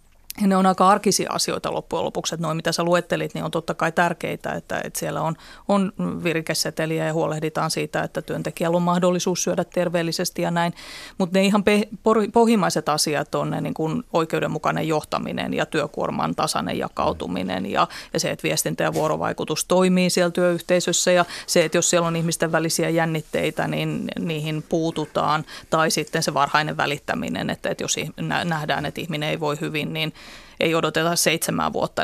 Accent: native